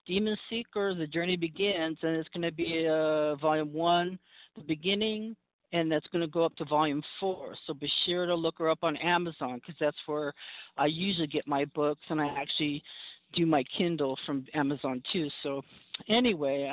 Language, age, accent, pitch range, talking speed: English, 50-69, American, 145-175 Hz, 185 wpm